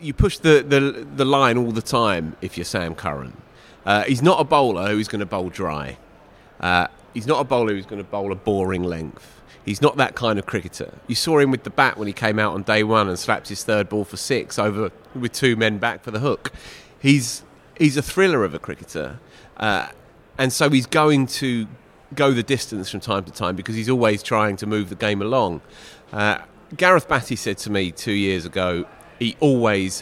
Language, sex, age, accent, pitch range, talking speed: English, male, 30-49, British, 95-130 Hz, 220 wpm